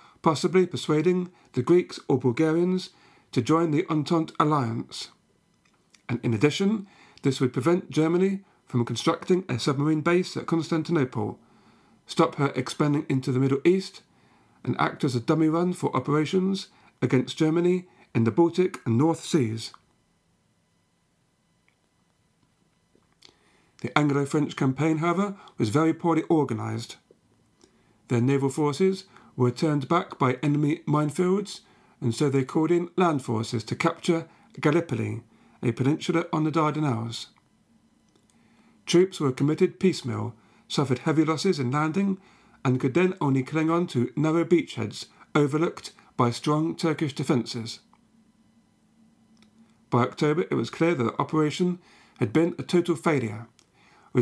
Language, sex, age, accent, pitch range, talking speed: English, male, 50-69, British, 130-175 Hz, 130 wpm